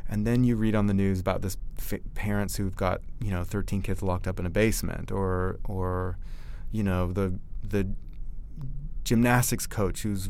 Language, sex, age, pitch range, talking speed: English, male, 30-49, 95-115 Hz, 175 wpm